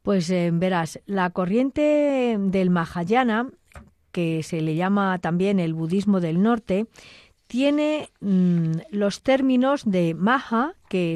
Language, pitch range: Spanish, 180-245 Hz